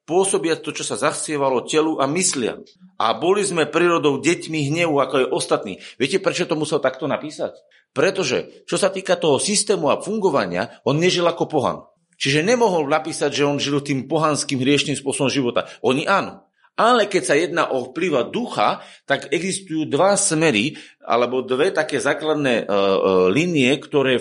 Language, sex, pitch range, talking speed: Slovak, male, 125-165 Hz, 160 wpm